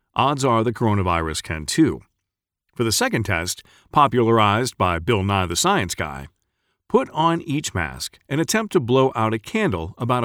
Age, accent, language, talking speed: 40-59, American, English, 170 wpm